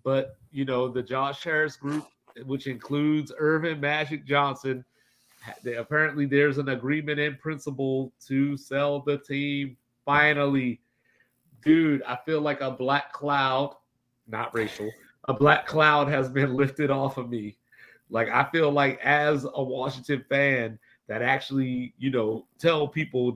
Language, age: English, 30-49